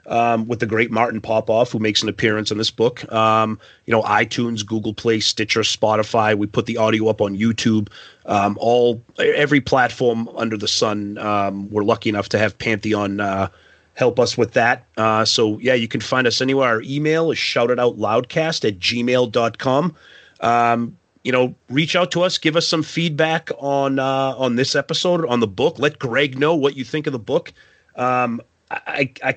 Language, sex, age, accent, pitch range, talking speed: English, male, 30-49, American, 110-135 Hz, 190 wpm